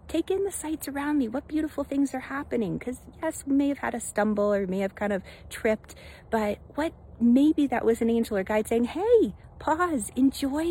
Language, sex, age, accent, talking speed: English, female, 40-59, American, 215 wpm